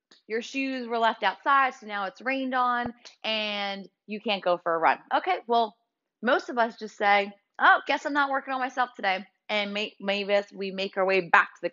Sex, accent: female, American